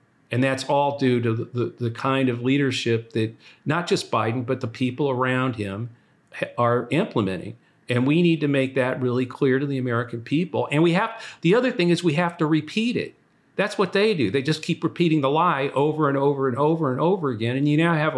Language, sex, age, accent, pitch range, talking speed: English, male, 50-69, American, 125-155 Hz, 230 wpm